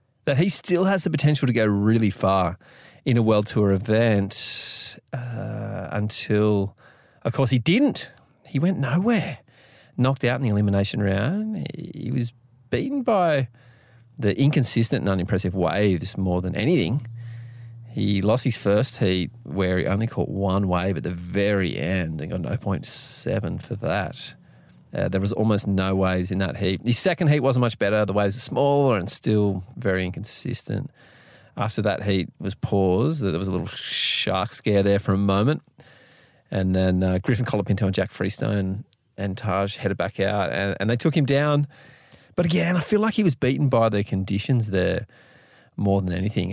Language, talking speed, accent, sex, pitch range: English, 175 wpm, Australian, male, 100-135 Hz